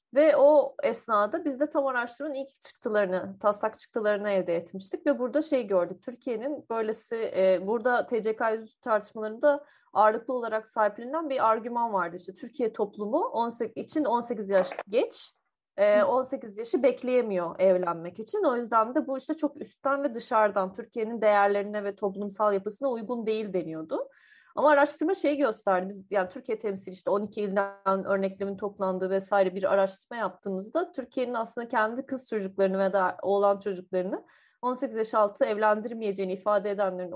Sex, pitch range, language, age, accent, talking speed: female, 195-265 Hz, Turkish, 30-49, native, 145 wpm